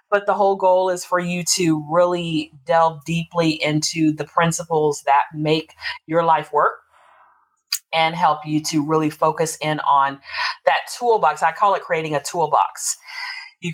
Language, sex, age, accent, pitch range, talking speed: English, female, 30-49, American, 150-190 Hz, 155 wpm